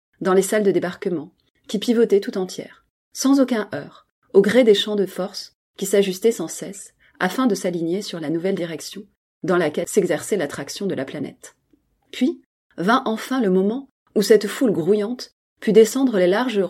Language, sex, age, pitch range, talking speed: French, female, 30-49, 180-235 Hz, 175 wpm